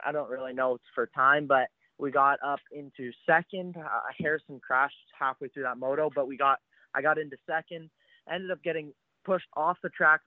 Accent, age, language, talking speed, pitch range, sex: American, 20-39, English, 200 wpm, 145-175 Hz, male